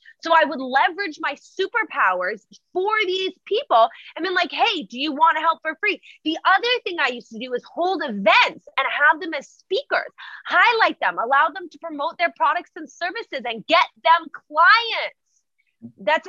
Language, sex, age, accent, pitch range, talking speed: English, female, 20-39, American, 290-400 Hz, 185 wpm